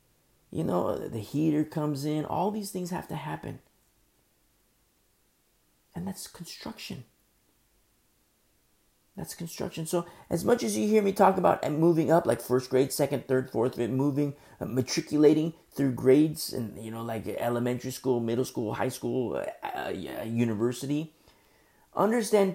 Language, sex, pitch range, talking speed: English, male, 120-175 Hz, 145 wpm